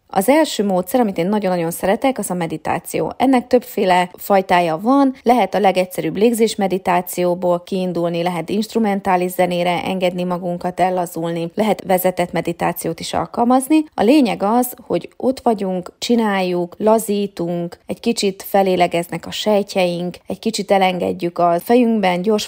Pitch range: 175-220 Hz